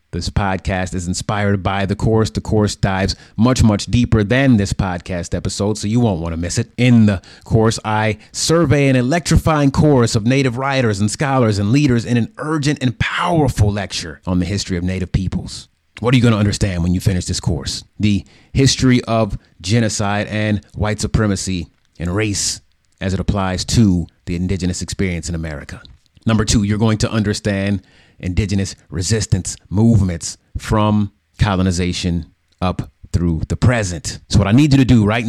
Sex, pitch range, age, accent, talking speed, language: male, 95-120 Hz, 30-49, American, 175 wpm, English